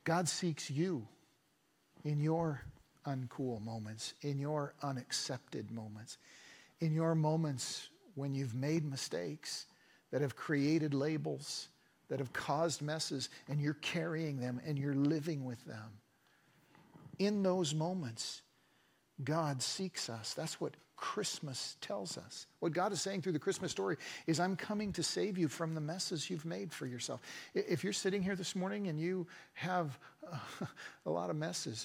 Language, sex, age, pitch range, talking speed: English, male, 50-69, 135-175 Hz, 150 wpm